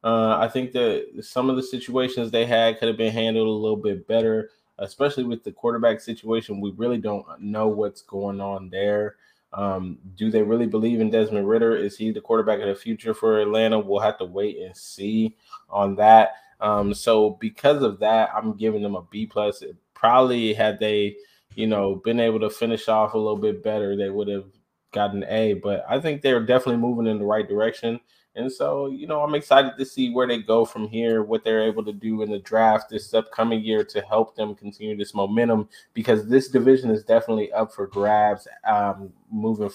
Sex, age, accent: male, 20-39, American